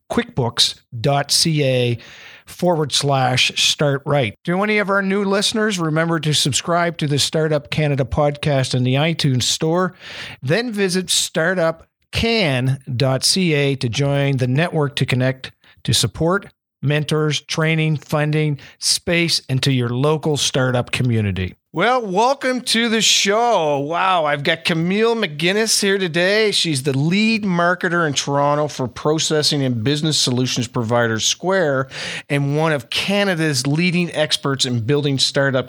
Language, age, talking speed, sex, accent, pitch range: English, 50-69, 130 wpm, male, American, 130-170 Hz